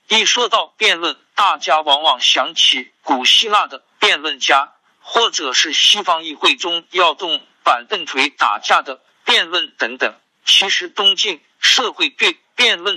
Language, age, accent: Chinese, 50-69, native